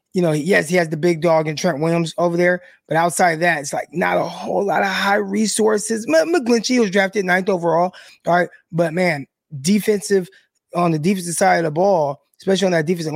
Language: English